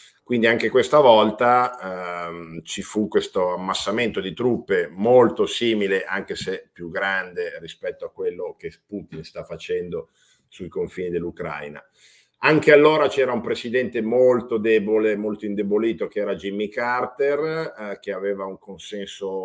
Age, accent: 50-69, native